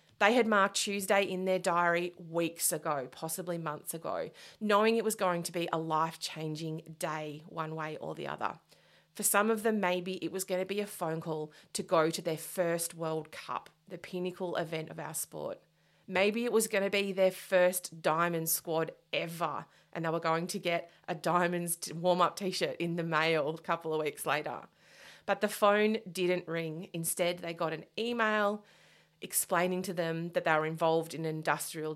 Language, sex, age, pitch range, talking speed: English, female, 30-49, 160-185 Hz, 190 wpm